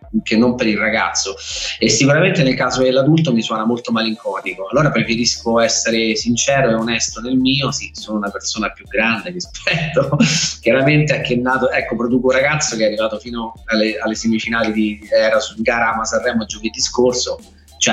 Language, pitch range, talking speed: Italian, 110-150 Hz, 175 wpm